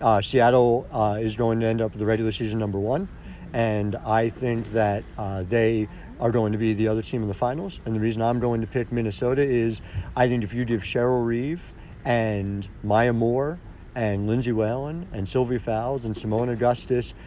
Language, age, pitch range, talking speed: English, 50-69, 110-140 Hz, 200 wpm